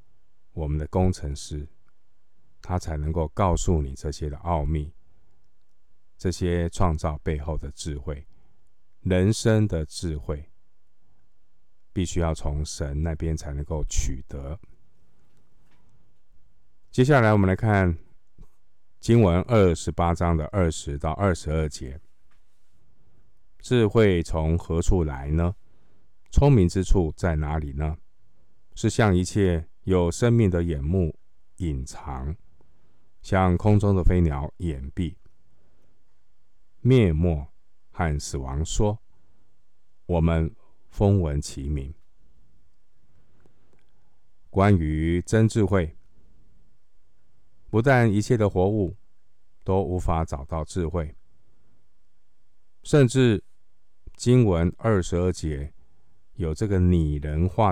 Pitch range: 80-100 Hz